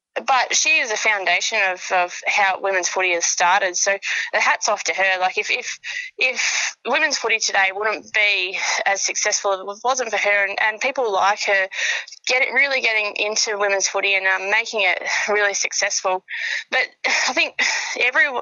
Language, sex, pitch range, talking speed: English, female, 190-225 Hz, 180 wpm